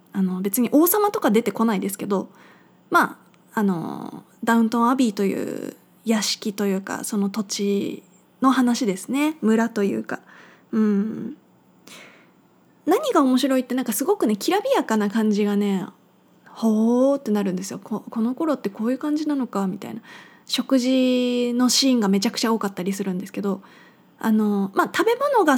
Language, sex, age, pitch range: Japanese, female, 20-39, 205-265 Hz